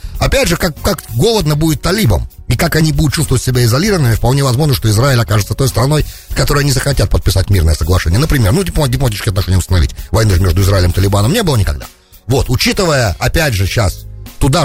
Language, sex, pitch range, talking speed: English, male, 95-130 Hz, 195 wpm